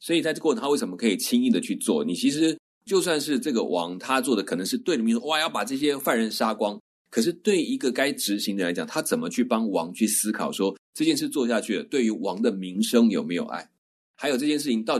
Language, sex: Chinese, male